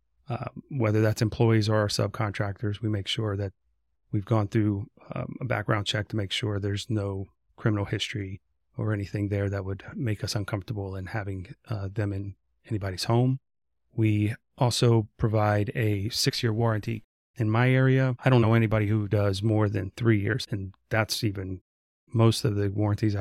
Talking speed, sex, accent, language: 170 wpm, male, American, English